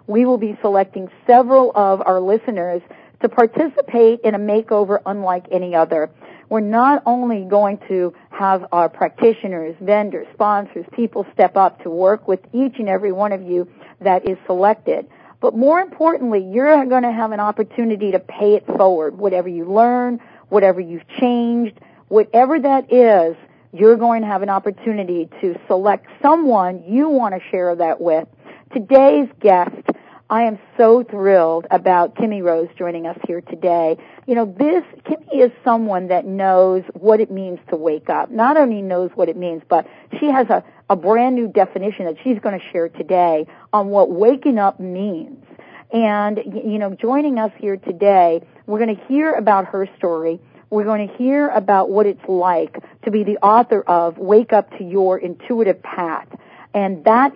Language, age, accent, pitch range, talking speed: English, 50-69, American, 185-235 Hz, 175 wpm